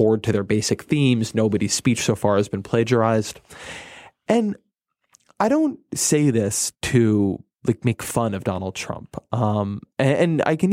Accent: American